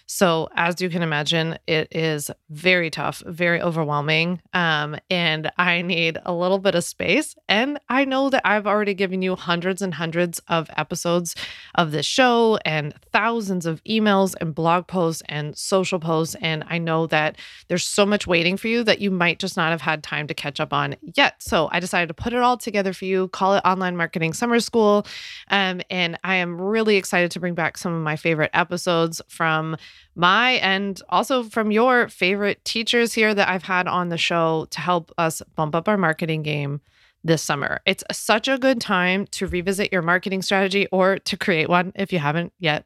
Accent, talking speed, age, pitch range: American, 200 wpm, 30-49, 165-195 Hz